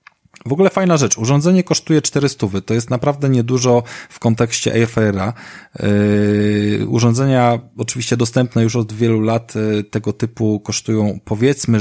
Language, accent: Polish, native